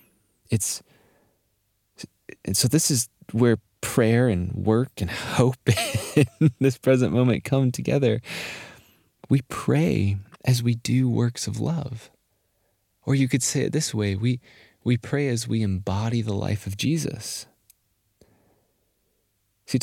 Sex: male